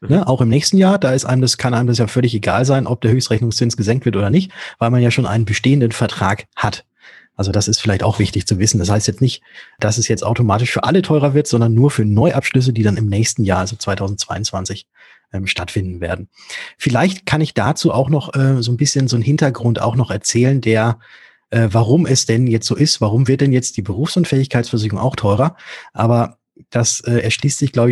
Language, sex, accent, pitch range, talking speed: German, male, German, 110-140 Hz, 220 wpm